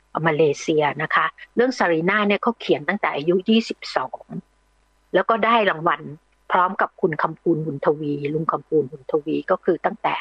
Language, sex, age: Thai, female, 60-79